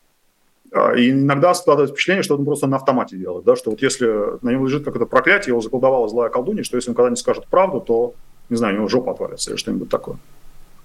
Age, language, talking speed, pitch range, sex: 30-49, Russian, 215 wpm, 120-160 Hz, male